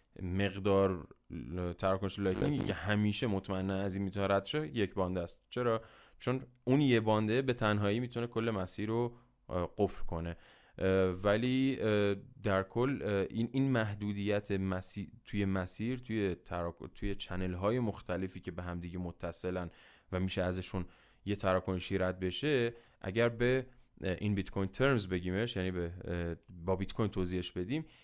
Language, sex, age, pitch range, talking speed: Persian, male, 10-29, 90-120 Hz, 135 wpm